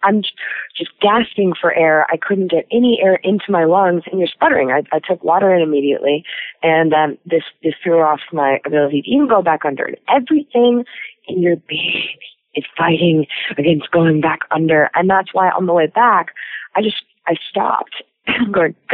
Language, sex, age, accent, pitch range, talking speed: English, female, 30-49, American, 160-215 Hz, 185 wpm